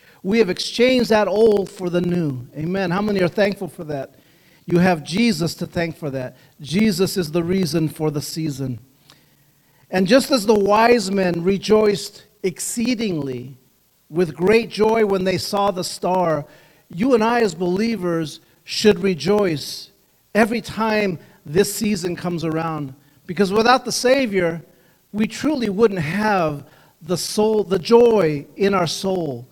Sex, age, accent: male, 50-69, American